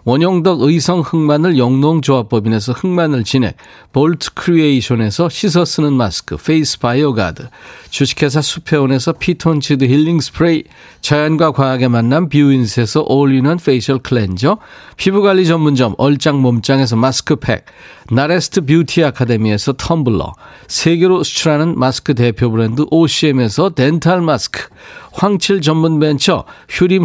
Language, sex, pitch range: Korean, male, 115-155 Hz